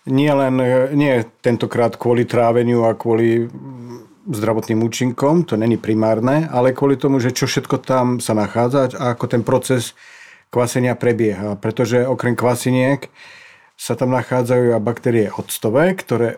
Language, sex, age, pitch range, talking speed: Slovak, male, 50-69, 115-135 Hz, 135 wpm